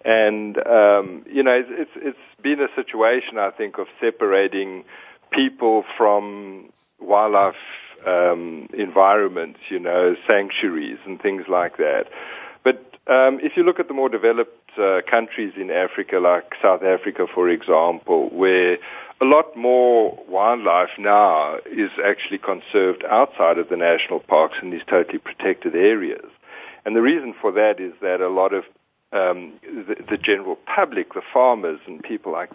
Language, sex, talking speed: English, male, 150 wpm